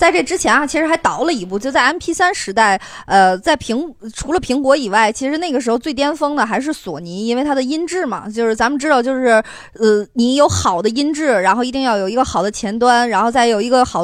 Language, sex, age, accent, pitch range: Chinese, female, 20-39, native, 220-280 Hz